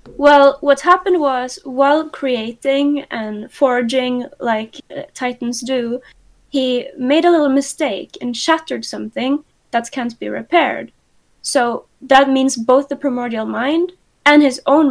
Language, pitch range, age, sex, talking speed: English, 230-275 Hz, 20-39, female, 135 wpm